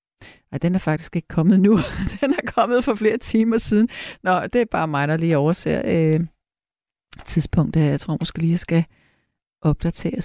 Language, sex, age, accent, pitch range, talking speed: Danish, female, 40-59, native, 175-250 Hz, 185 wpm